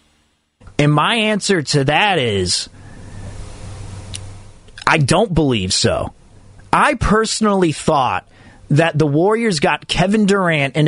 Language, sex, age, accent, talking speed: English, male, 30-49, American, 110 wpm